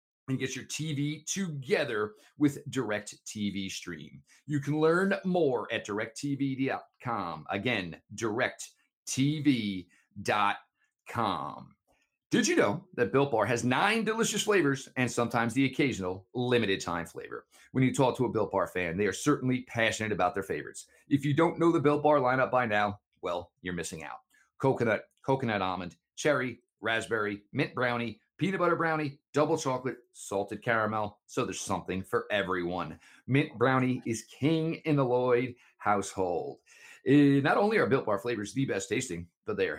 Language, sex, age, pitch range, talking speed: English, male, 40-59, 105-150 Hz, 150 wpm